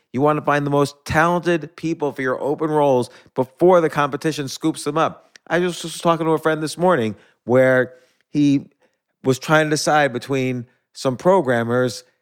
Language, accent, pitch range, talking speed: English, American, 125-155 Hz, 175 wpm